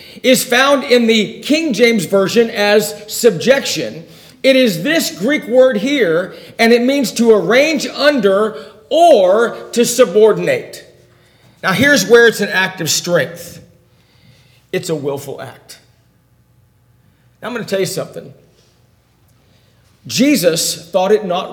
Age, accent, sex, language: 50-69, American, male, English